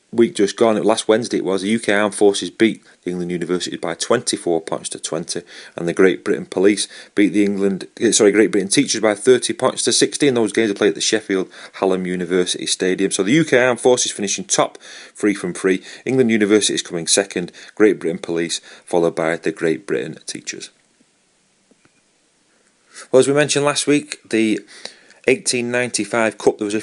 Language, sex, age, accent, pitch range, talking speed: English, male, 30-49, British, 95-115 Hz, 190 wpm